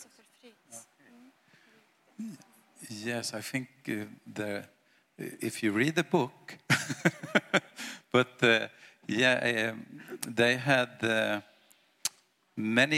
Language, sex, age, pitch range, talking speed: Polish, male, 50-69, 105-125 Hz, 85 wpm